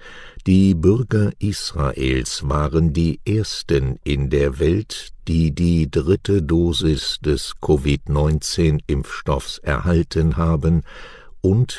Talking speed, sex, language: 90 wpm, male, English